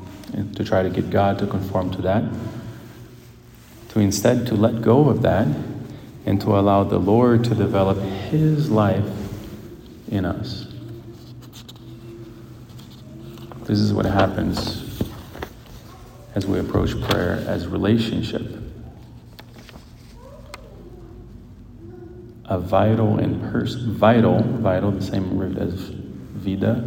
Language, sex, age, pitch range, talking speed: English, male, 40-59, 100-115 Hz, 105 wpm